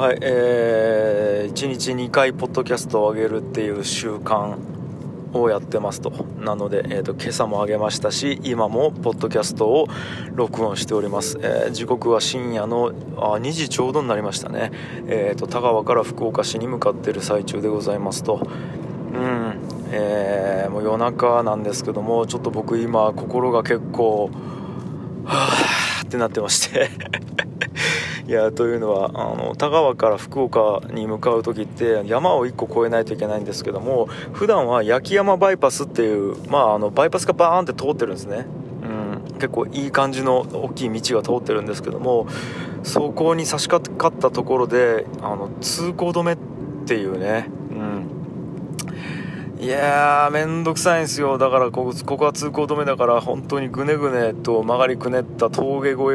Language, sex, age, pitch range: Japanese, male, 20-39, 110-140 Hz